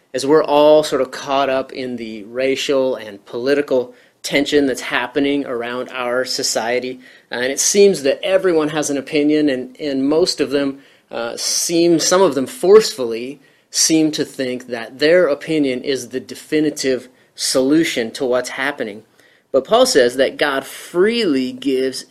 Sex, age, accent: male, 30-49, American